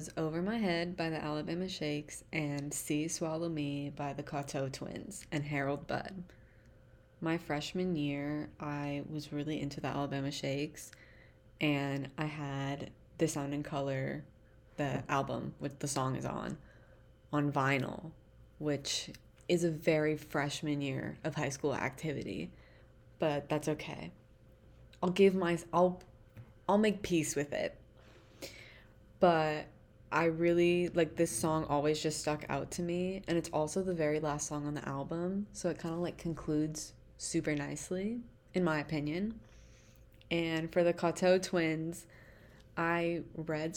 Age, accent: 20-39, American